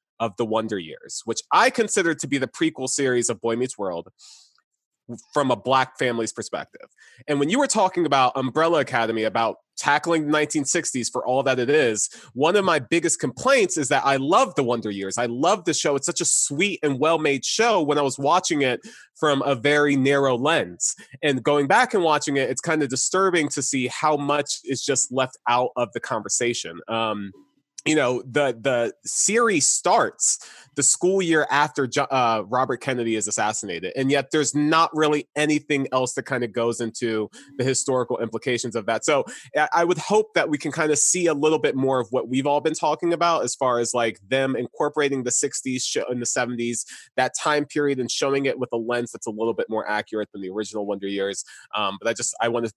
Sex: male